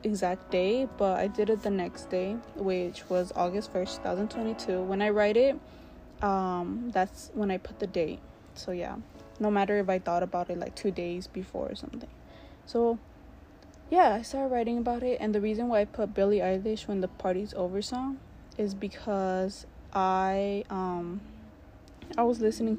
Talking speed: 175 wpm